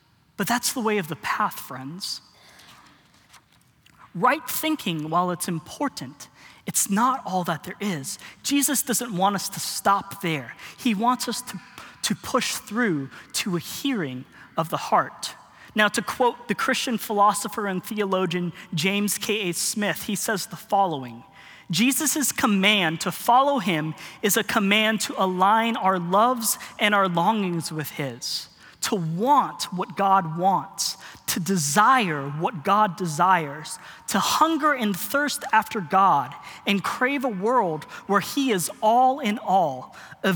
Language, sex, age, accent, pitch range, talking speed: English, male, 20-39, American, 175-240 Hz, 145 wpm